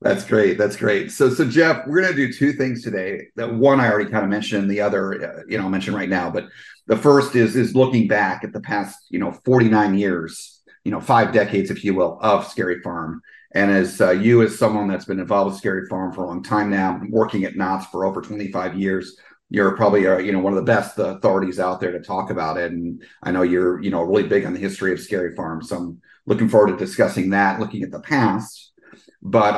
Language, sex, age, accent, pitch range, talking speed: English, male, 40-59, American, 95-120 Hz, 245 wpm